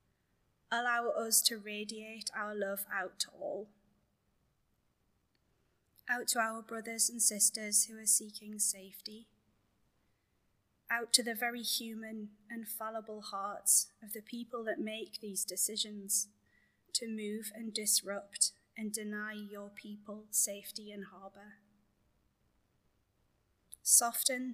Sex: female